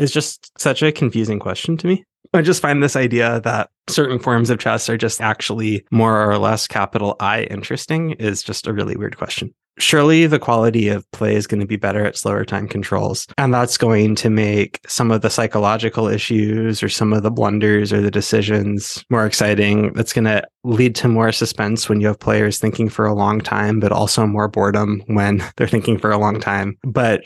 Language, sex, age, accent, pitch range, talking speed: English, male, 20-39, American, 105-120 Hz, 210 wpm